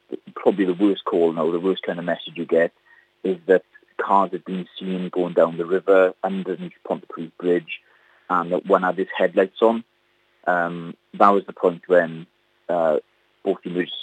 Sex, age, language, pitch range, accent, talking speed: male, 30-49, English, 85-95 Hz, British, 180 wpm